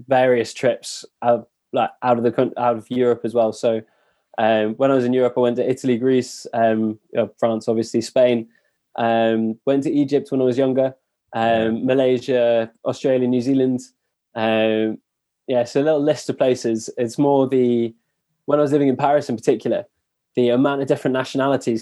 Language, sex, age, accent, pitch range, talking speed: English, male, 20-39, British, 115-130 Hz, 180 wpm